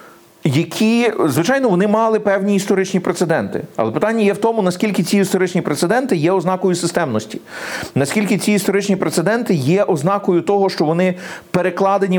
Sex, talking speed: male, 145 wpm